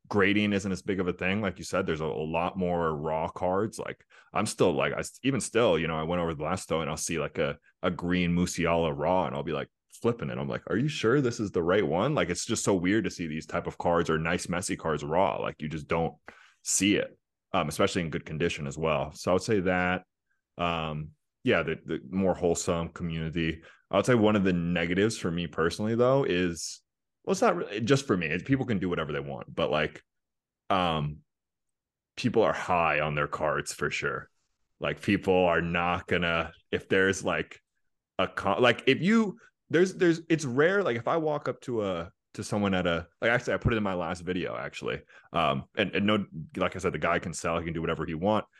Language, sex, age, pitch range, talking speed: English, male, 20-39, 80-100 Hz, 235 wpm